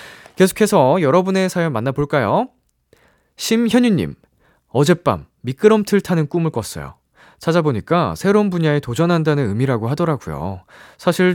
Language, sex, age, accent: Korean, male, 20-39, native